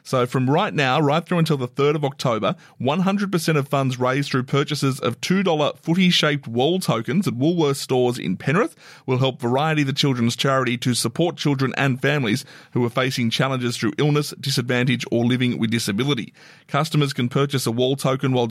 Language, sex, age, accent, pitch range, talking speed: English, male, 30-49, Australian, 120-145 Hz, 180 wpm